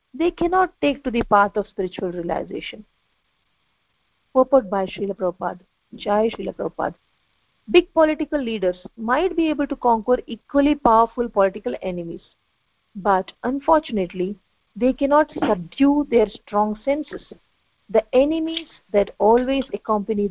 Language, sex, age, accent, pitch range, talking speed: English, female, 50-69, Indian, 205-285 Hz, 120 wpm